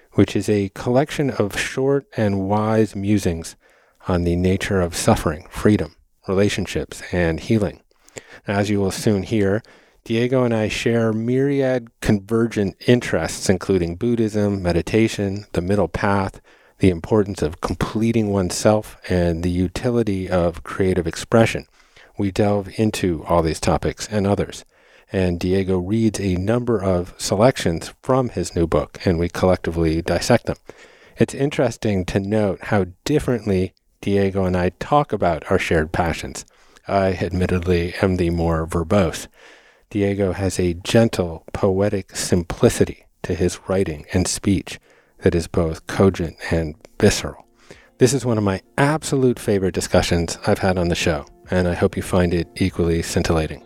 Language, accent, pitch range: English, American, 90-110 Hz